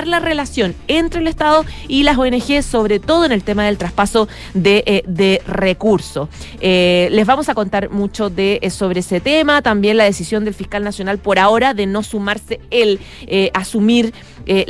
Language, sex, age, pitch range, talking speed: Spanish, female, 30-49, 190-225 Hz, 165 wpm